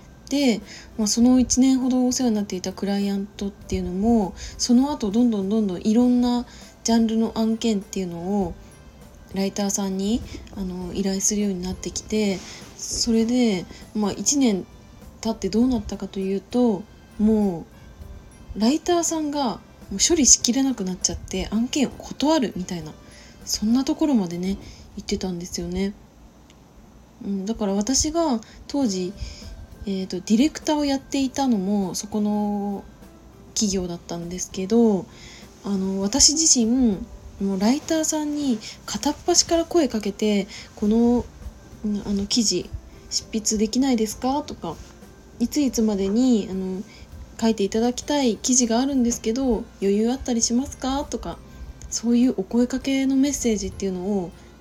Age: 20-39